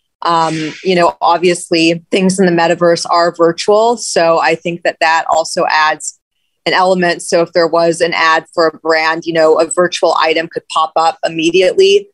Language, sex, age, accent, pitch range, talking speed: English, female, 30-49, American, 160-180 Hz, 185 wpm